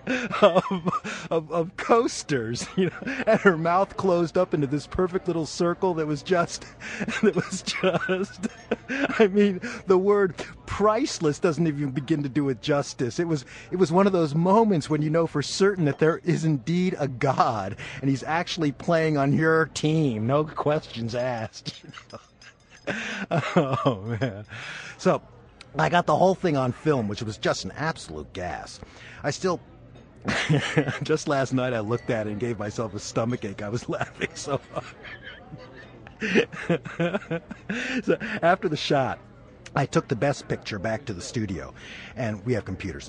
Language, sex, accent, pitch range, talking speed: English, male, American, 115-175 Hz, 160 wpm